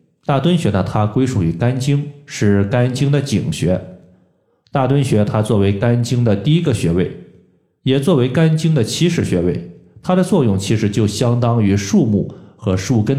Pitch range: 100-140 Hz